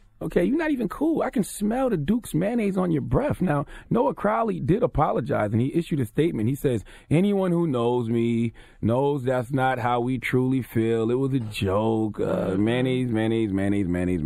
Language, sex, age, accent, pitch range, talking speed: English, male, 30-49, American, 105-150 Hz, 195 wpm